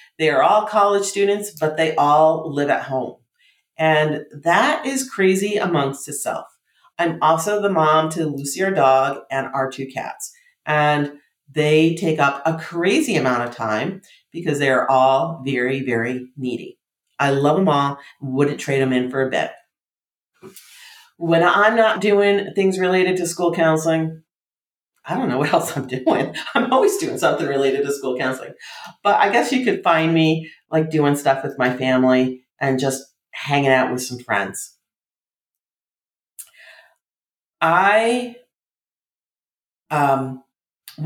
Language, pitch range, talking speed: English, 135-190 Hz, 150 wpm